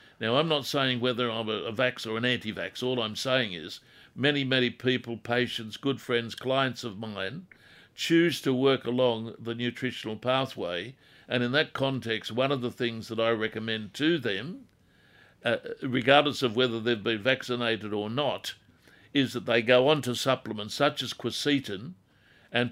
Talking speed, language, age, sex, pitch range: 170 wpm, English, 60-79, male, 115-135 Hz